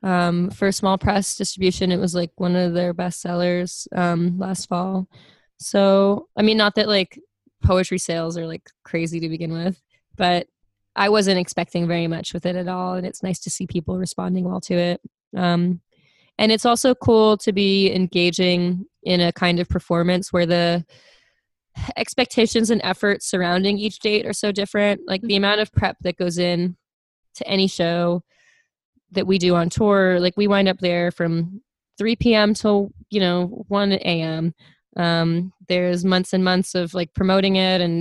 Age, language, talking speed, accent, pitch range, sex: 20-39, English, 175 wpm, American, 175-200 Hz, female